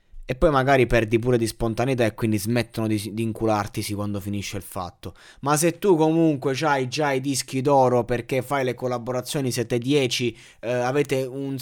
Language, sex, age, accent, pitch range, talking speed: Italian, male, 20-39, native, 120-145 Hz, 180 wpm